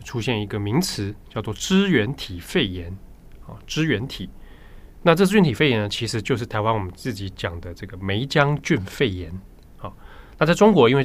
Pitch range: 100-145 Hz